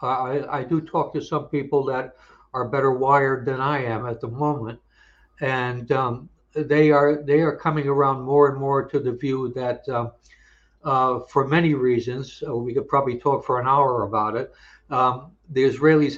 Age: 60-79